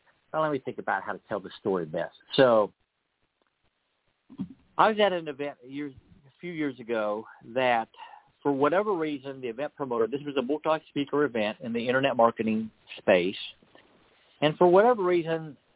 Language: English